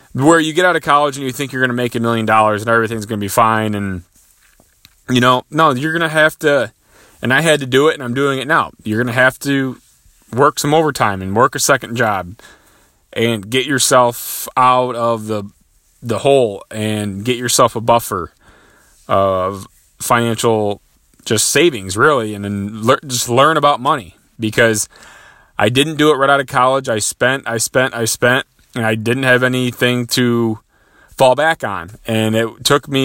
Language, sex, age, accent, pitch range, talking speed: English, male, 30-49, American, 110-140 Hz, 190 wpm